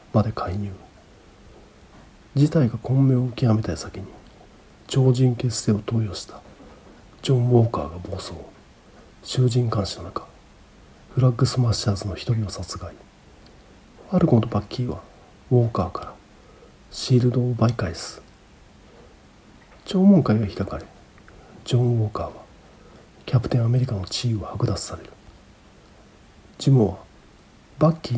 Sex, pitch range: male, 100-125 Hz